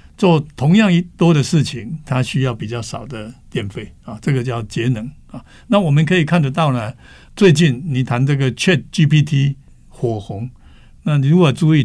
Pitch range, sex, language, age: 110-155 Hz, male, Chinese, 60-79